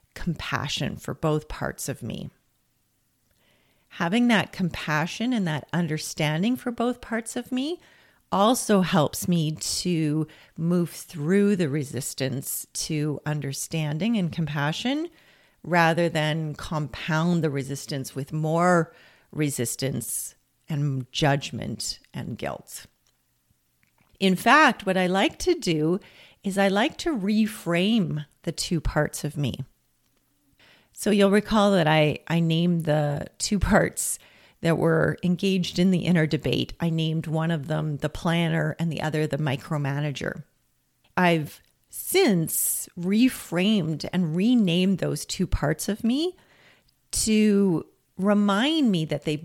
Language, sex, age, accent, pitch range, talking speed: English, female, 40-59, American, 150-195 Hz, 125 wpm